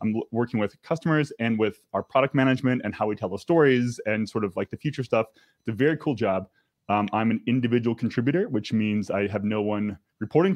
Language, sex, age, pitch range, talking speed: English, male, 20-39, 105-135 Hz, 220 wpm